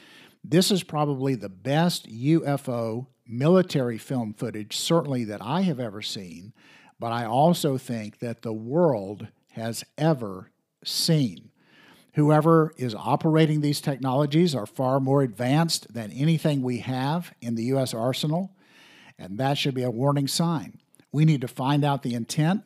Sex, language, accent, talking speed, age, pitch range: male, English, American, 150 wpm, 50-69, 125-160 Hz